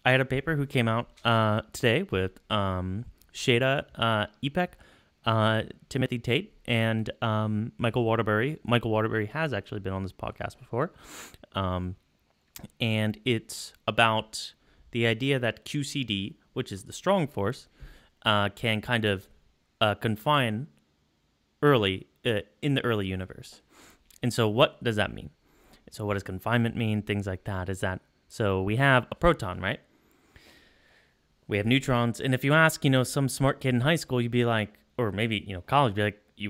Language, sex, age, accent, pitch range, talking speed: English, male, 30-49, American, 100-130 Hz, 170 wpm